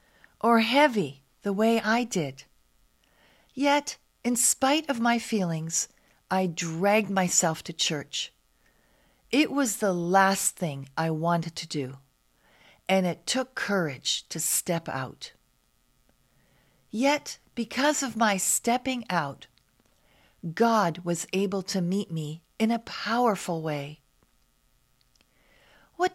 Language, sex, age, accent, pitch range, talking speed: English, female, 50-69, American, 155-235 Hz, 115 wpm